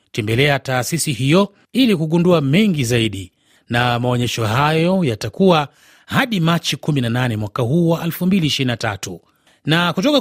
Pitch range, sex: 125-175 Hz, male